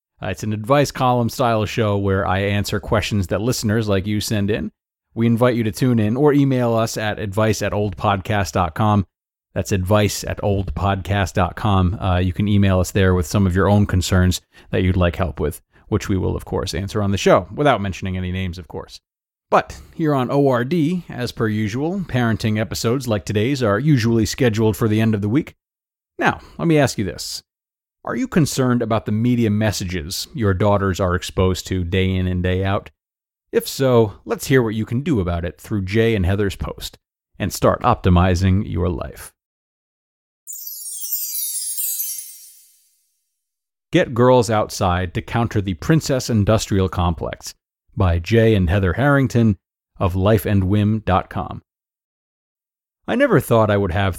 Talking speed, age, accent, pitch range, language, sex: 165 wpm, 30-49, American, 95-115 Hz, English, male